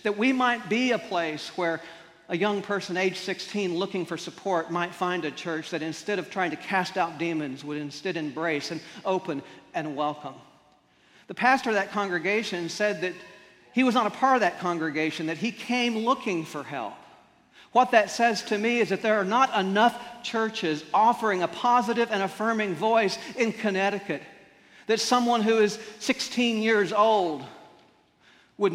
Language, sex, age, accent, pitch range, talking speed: English, male, 40-59, American, 165-220 Hz, 175 wpm